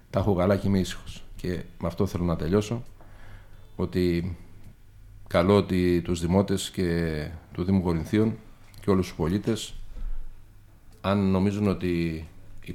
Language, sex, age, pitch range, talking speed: Greek, male, 50-69, 85-100 Hz, 130 wpm